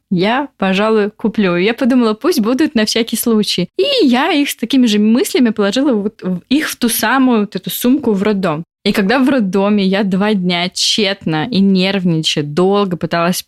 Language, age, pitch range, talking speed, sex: Russian, 20-39, 180-225 Hz, 165 wpm, female